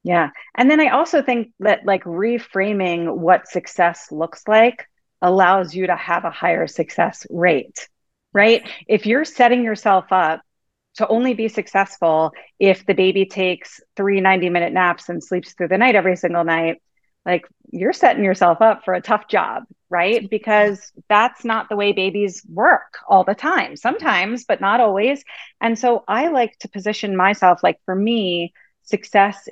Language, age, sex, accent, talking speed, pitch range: English, 30-49, female, American, 165 wpm, 175-225 Hz